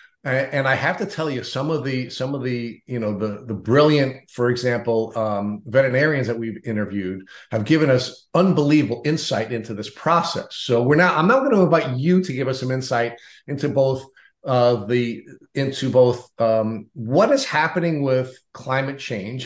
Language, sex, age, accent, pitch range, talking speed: English, male, 50-69, American, 120-150 Hz, 180 wpm